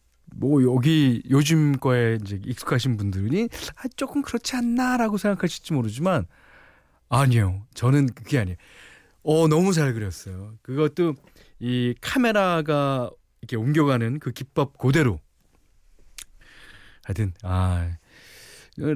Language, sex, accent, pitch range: Korean, male, native, 100-155 Hz